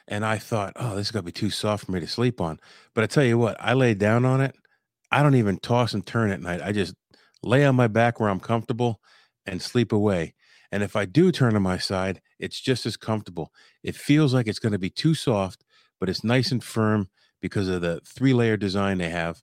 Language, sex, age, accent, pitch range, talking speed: English, male, 50-69, American, 100-125 Hz, 245 wpm